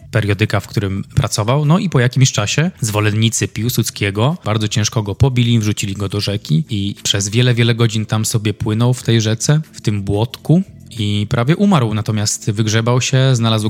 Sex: male